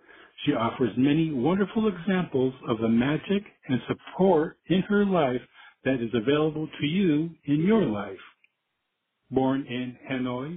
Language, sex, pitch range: English, male, 120-170 Hz